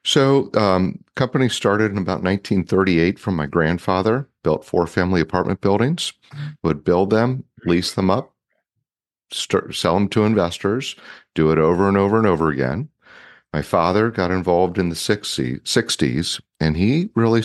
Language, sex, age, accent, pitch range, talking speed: English, male, 40-59, American, 80-105 Hz, 150 wpm